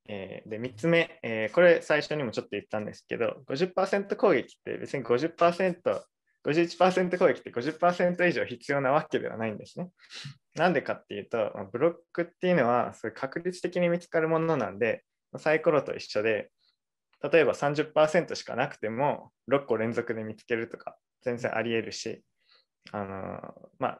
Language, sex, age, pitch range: Japanese, male, 20-39, 120-170 Hz